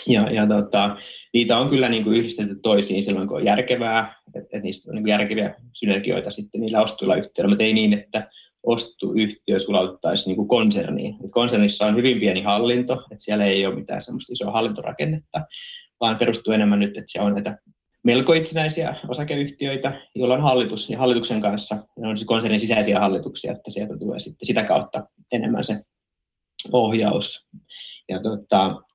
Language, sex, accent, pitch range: Finnish, male, native, 105-125 Hz